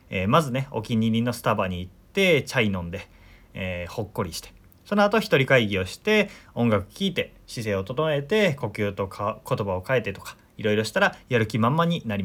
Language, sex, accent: Japanese, male, native